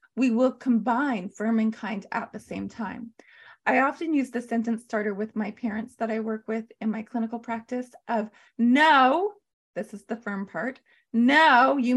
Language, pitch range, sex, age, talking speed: English, 225-260 Hz, female, 30-49, 180 wpm